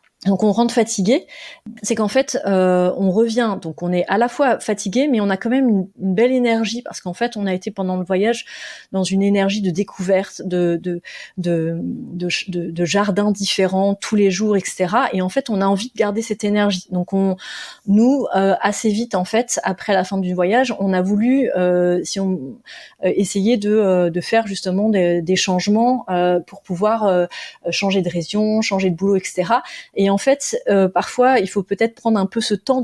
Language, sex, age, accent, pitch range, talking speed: French, female, 30-49, French, 190-230 Hz, 210 wpm